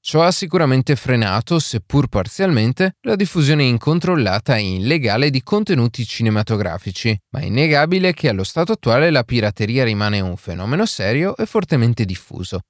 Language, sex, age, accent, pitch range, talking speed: Italian, male, 30-49, native, 105-160 Hz, 140 wpm